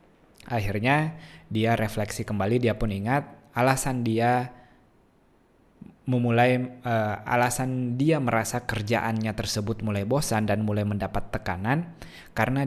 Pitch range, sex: 100-125 Hz, male